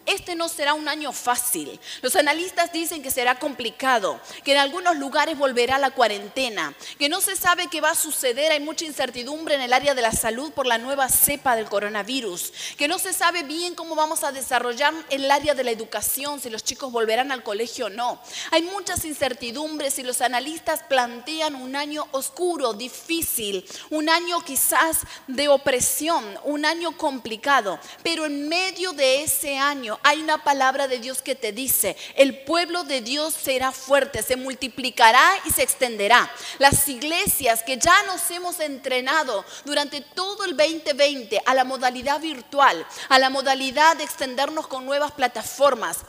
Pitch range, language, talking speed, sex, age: 255-315 Hz, Spanish, 170 wpm, female, 30-49